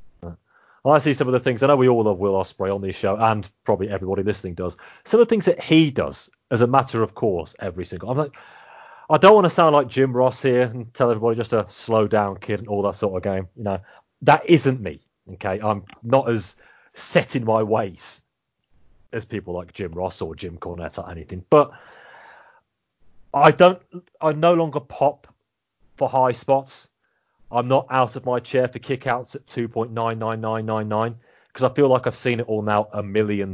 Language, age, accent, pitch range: English, 30-49, British, 100-135 Hz